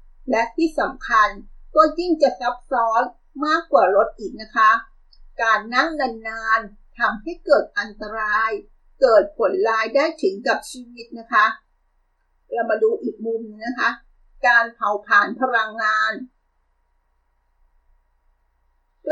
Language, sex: Thai, female